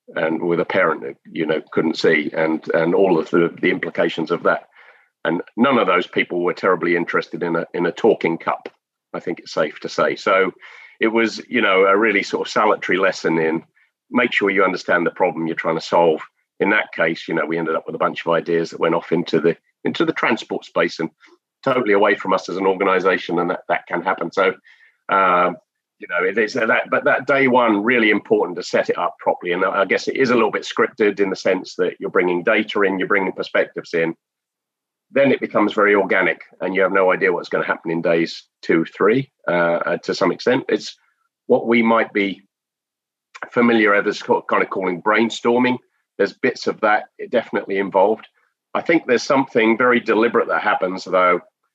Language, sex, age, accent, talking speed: English, male, 40-59, British, 215 wpm